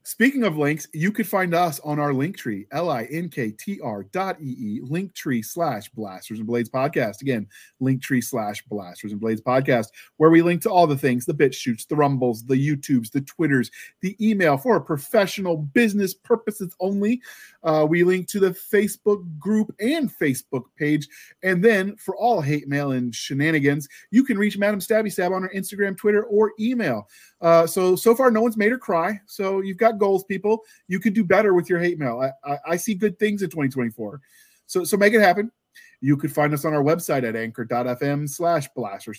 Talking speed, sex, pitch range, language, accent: 190 wpm, male, 130-195 Hz, English, American